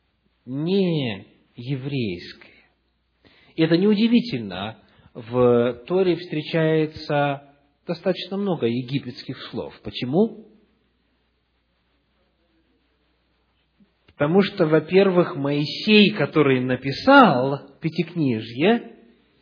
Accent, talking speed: native, 60 wpm